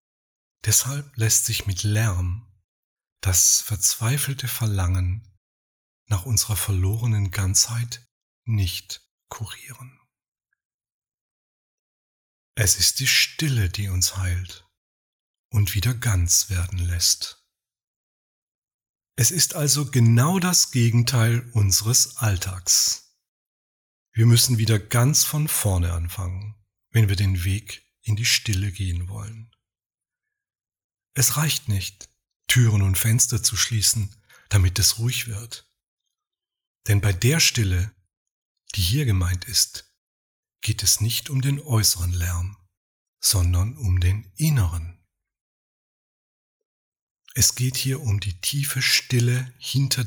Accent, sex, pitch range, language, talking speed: German, male, 95-120 Hz, German, 105 wpm